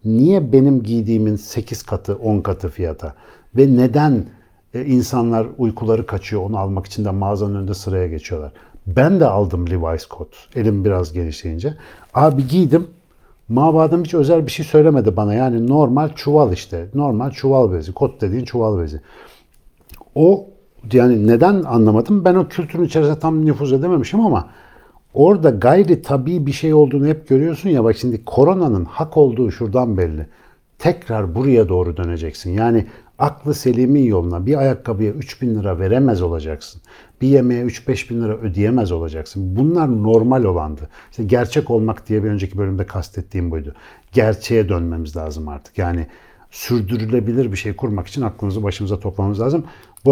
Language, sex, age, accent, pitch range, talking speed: Turkish, male, 60-79, native, 100-140 Hz, 150 wpm